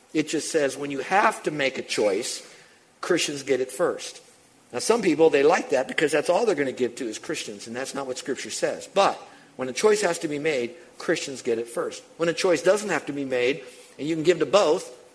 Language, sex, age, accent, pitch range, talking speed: English, male, 50-69, American, 130-200 Hz, 245 wpm